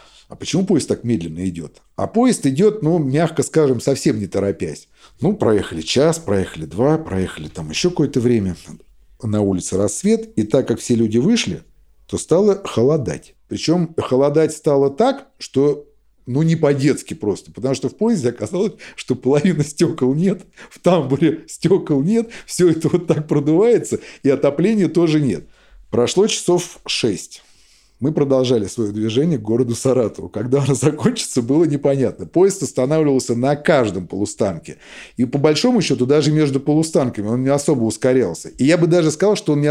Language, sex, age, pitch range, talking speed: Russian, male, 50-69, 130-175 Hz, 160 wpm